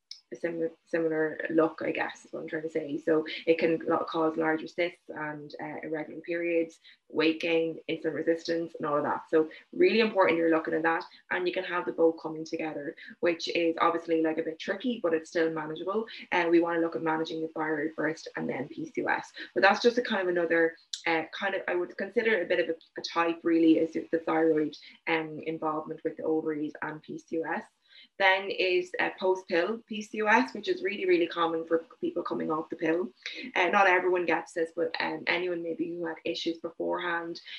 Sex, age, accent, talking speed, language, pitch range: female, 20-39, Irish, 210 wpm, English, 160-175 Hz